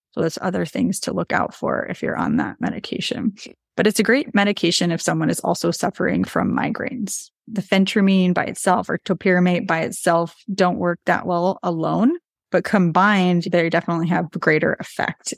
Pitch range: 175-220 Hz